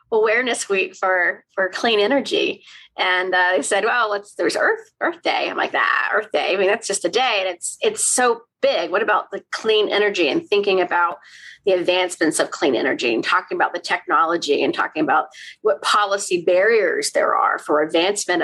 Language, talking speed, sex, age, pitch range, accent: English, 200 wpm, female, 30-49, 195-270 Hz, American